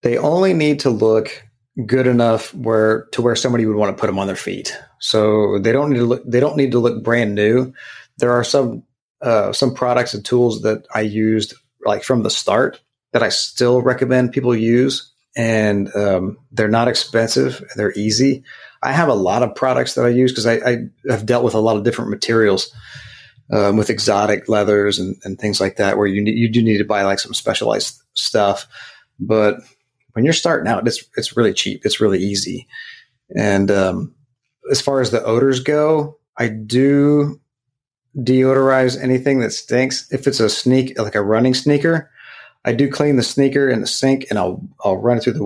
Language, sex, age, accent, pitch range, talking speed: English, male, 30-49, American, 105-130 Hz, 200 wpm